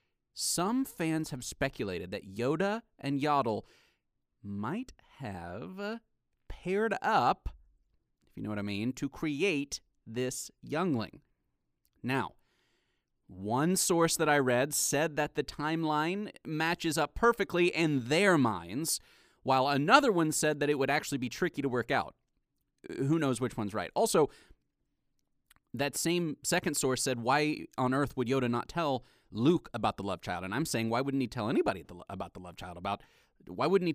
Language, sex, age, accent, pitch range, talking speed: English, male, 30-49, American, 125-180 Hz, 160 wpm